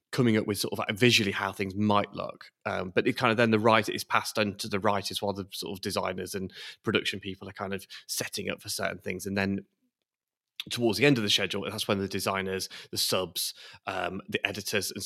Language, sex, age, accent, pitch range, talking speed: English, male, 20-39, British, 100-125 Hz, 230 wpm